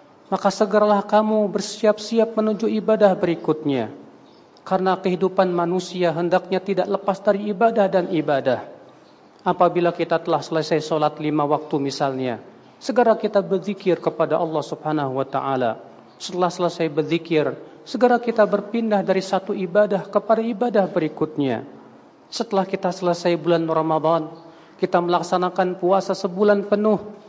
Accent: native